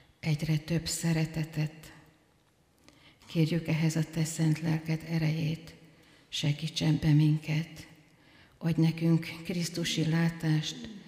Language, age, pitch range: Hungarian, 50-69, 155-165 Hz